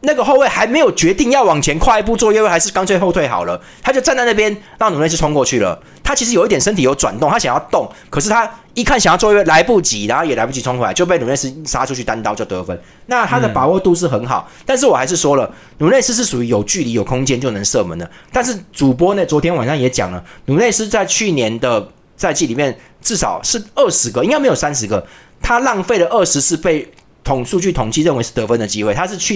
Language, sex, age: Chinese, male, 30-49